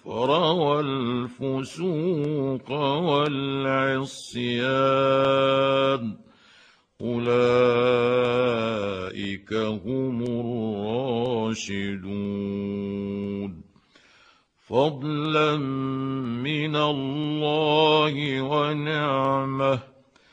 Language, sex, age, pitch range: Arabic, male, 60-79, 120-140 Hz